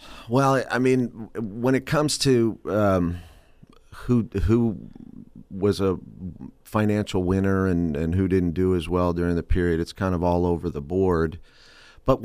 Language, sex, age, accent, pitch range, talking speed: English, male, 40-59, American, 85-105 Hz, 155 wpm